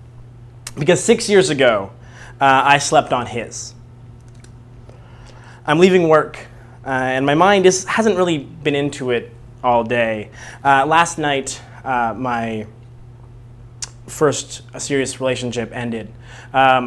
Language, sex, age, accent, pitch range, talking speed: English, male, 20-39, American, 120-145 Hz, 115 wpm